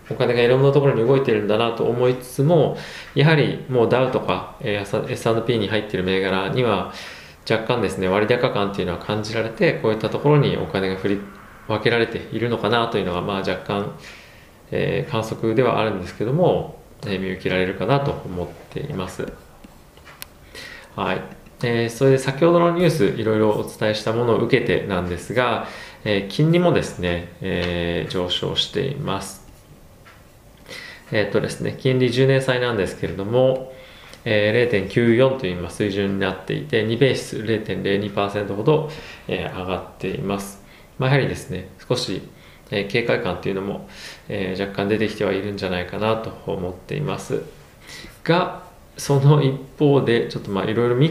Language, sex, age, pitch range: Japanese, male, 20-39, 95-130 Hz